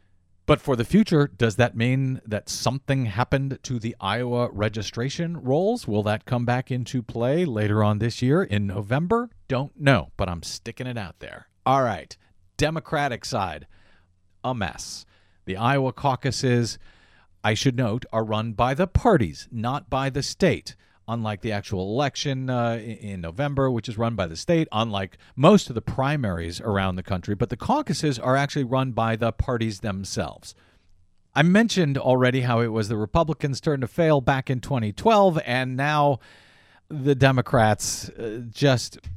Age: 40-59